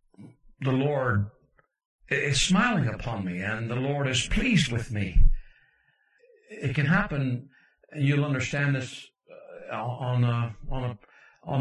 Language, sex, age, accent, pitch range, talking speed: English, male, 60-79, American, 115-150 Hz, 135 wpm